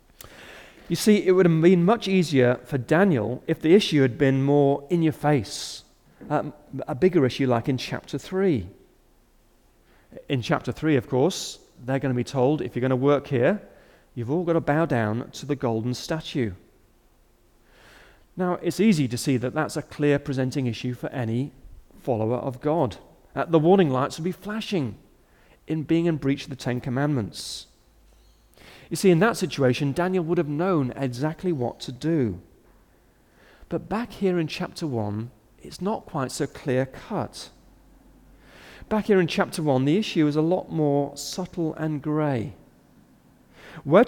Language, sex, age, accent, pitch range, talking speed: English, male, 40-59, British, 125-165 Hz, 170 wpm